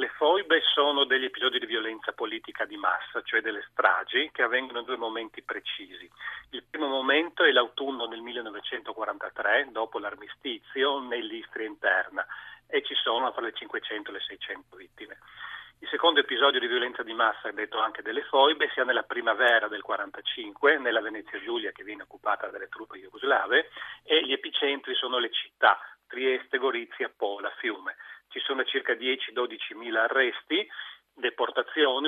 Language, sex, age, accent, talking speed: Italian, male, 40-59, native, 155 wpm